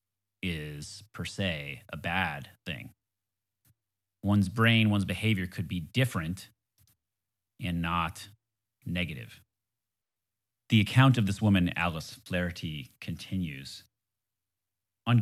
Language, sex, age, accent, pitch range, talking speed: English, male, 30-49, American, 90-110 Hz, 100 wpm